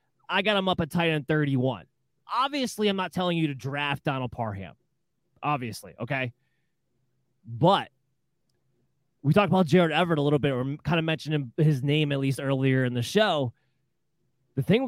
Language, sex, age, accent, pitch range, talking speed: English, male, 20-39, American, 135-175 Hz, 170 wpm